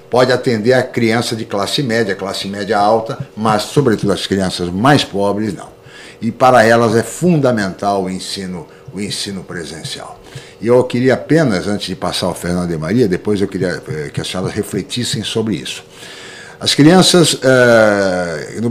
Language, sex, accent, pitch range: Portuguese, male, Brazilian, 100-140 Hz